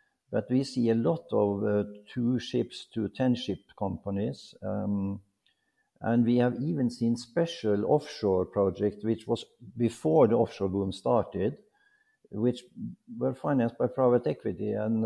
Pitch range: 100-130 Hz